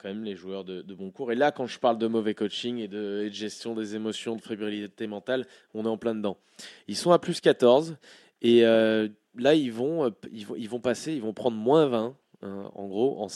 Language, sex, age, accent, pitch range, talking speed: French, male, 20-39, French, 110-140 Hz, 240 wpm